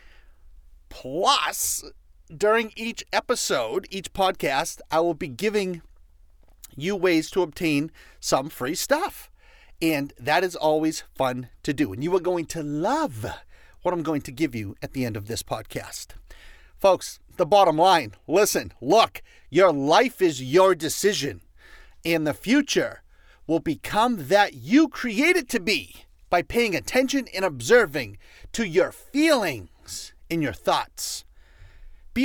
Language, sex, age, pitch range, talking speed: English, male, 40-59, 140-215 Hz, 140 wpm